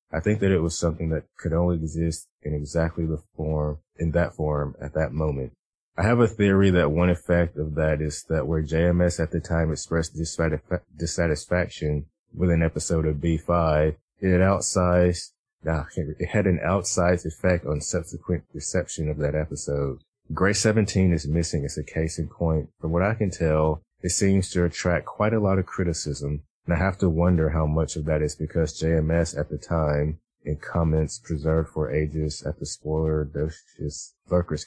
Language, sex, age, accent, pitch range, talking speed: English, male, 30-49, American, 75-90 Hz, 185 wpm